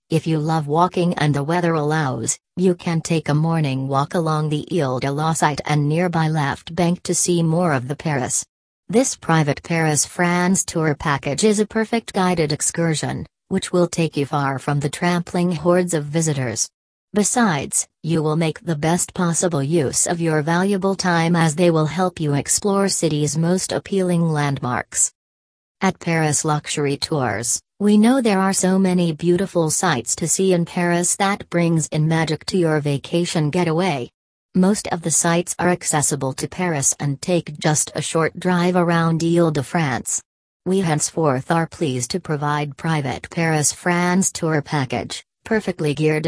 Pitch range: 150-180 Hz